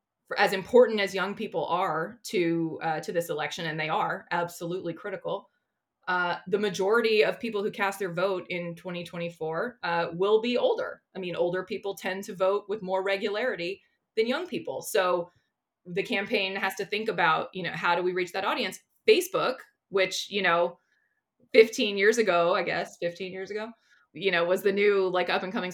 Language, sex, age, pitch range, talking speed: English, female, 20-39, 175-215 Hz, 185 wpm